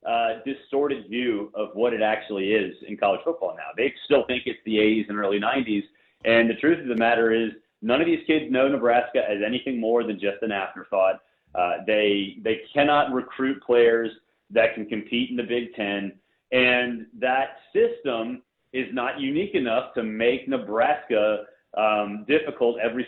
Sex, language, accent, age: male, English, American, 30-49